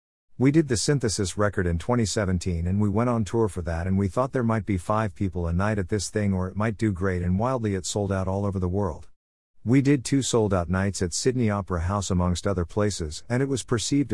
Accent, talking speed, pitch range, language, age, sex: American, 245 wpm, 90-110 Hz, English, 50-69, male